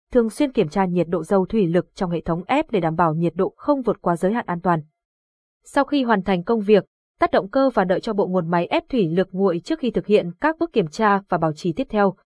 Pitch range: 175-230 Hz